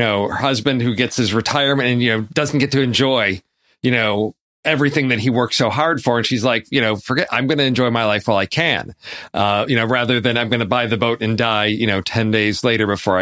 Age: 40-59